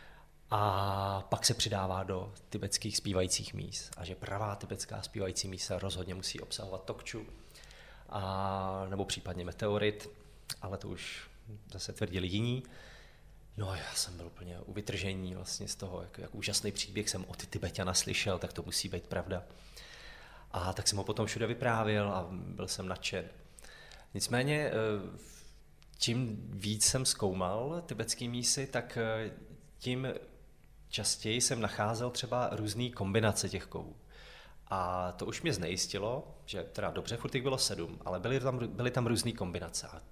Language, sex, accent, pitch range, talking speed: Czech, male, native, 95-115 Hz, 140 wpm